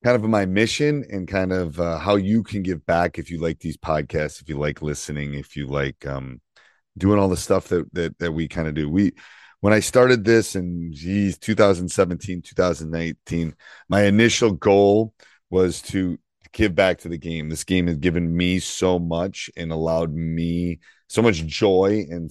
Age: 30-49